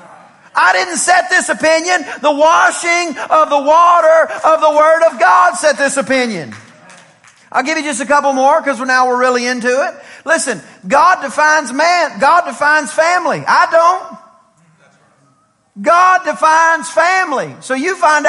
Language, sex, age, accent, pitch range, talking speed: English, male, 40-59, American, 285-335 Hz, 150 wpm